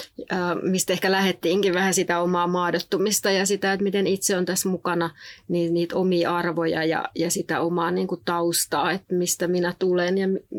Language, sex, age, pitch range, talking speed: Finnish, female, 30-49, 170-185 Hz, 170 wpm